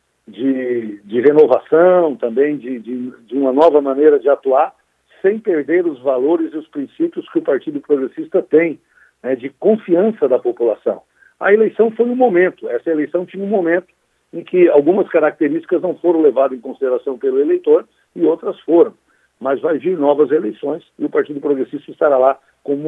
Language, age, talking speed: Portuguese, 60-79, 170 wpm